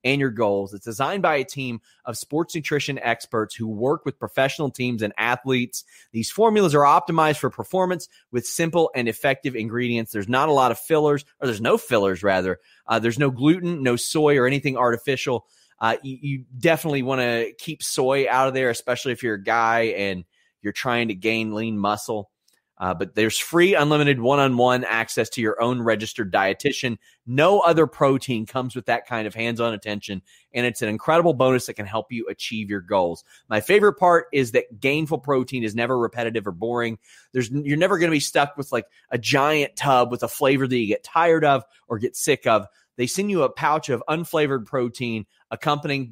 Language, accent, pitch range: English, American, 115-145 Hz